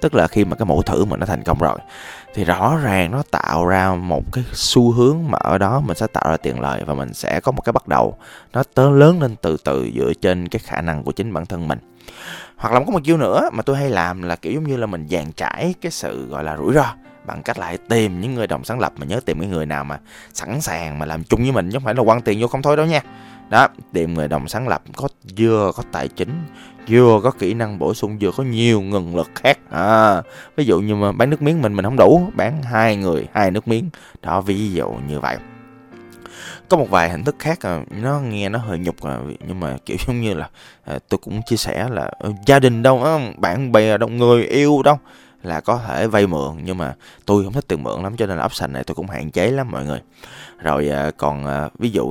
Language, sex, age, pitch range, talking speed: Vietnamese, male, 20-39, 85-125 Hz, 260 wpm